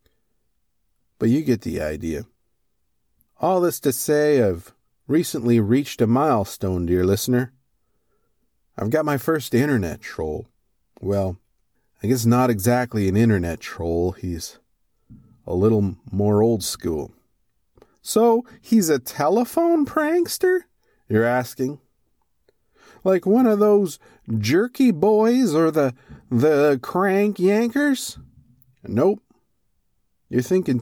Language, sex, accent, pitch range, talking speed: English, male, American, 105-155 Hz, 110 wpm